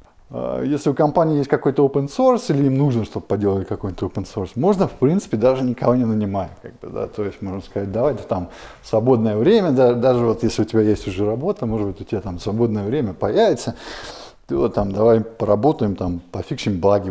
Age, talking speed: 20-39, 195 wpm